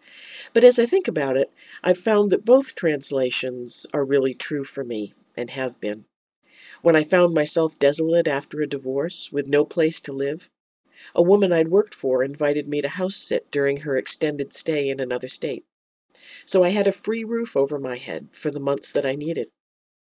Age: 50-69